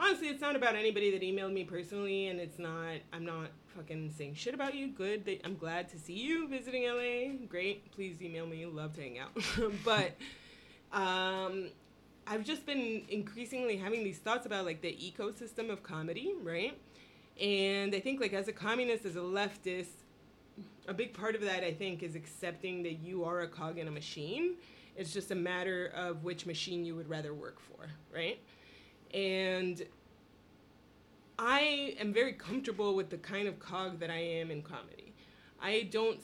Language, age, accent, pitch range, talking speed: English, 30-49, American, 170-215 Hz, 180 wpm